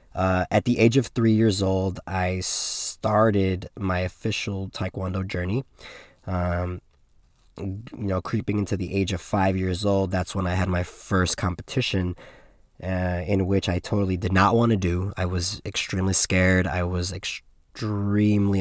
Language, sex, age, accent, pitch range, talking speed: English, male, 20-39, American, 90-105 Hz, 160 wpm